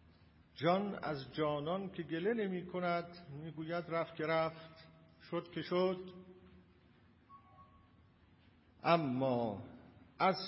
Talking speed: 85 wpm